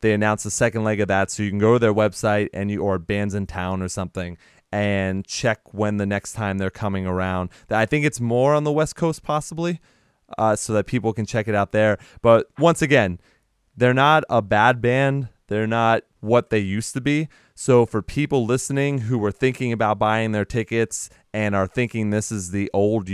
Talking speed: 215 wpm